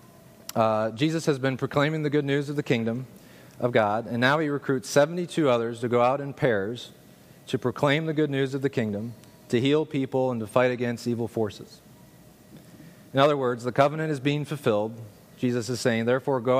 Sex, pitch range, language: male, 115-145 Hz, English